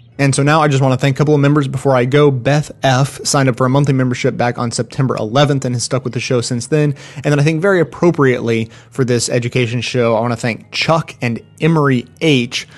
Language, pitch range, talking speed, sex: English, 120-140 Hz, 250 wpm, male